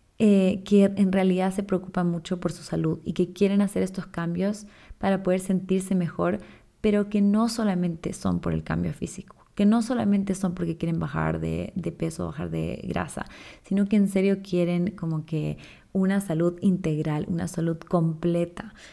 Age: 20-39